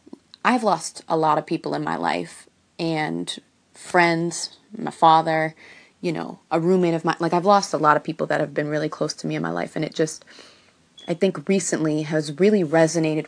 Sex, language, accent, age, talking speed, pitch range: female, English, American, 30-49, 205 wpm, 155-195 Hz